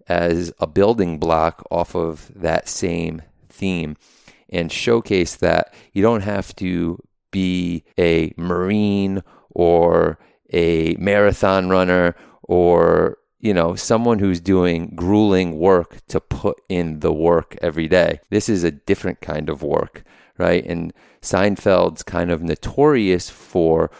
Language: English